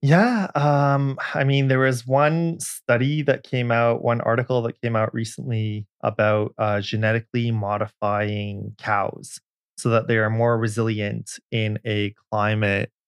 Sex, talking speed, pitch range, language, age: male, 140 wpm, 110-135 Hz, English, 20-39